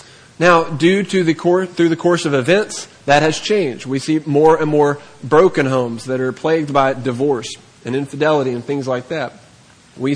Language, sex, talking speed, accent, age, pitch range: English, male, 190 wpm, American, 30-49, 145-185 Hz